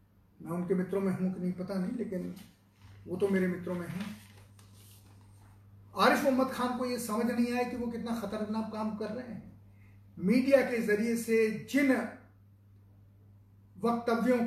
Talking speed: 160 wpm